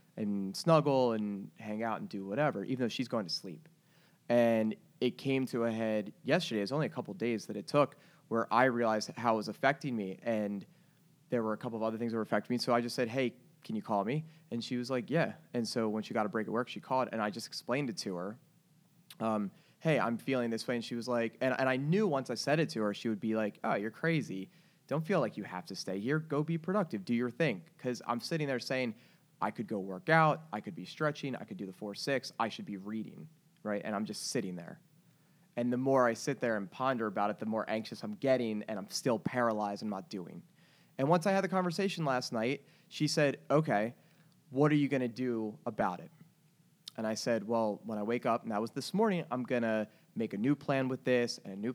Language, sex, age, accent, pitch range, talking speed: English, male, 20-39, American, 110-150 Hz, 255 wpm